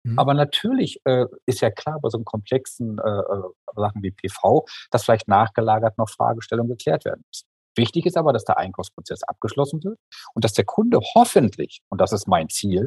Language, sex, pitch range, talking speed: German, male, 105-130 Hz, 185 wpm